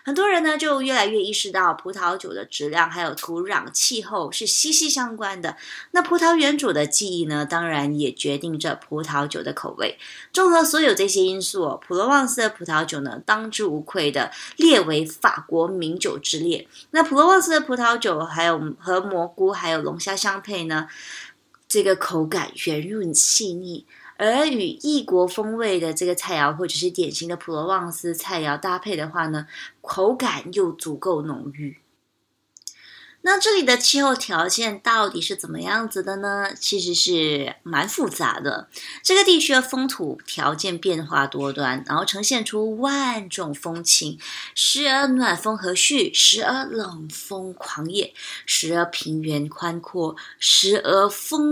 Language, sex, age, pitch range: English, female, 20-39, 165-255 Hz